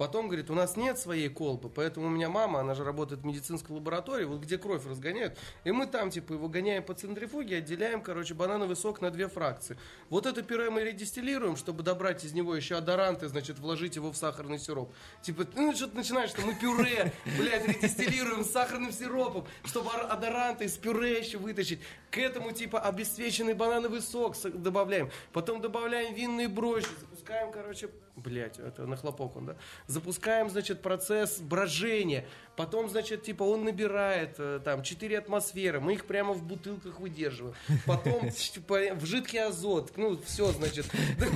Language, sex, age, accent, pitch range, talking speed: Russian, male, 20-39, native, 165-225 Hz, 170 wpm